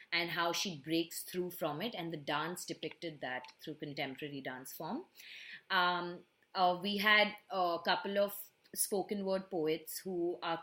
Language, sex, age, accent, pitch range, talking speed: English, female, 20-39, Indian, 155-190 Hz, 165 wpm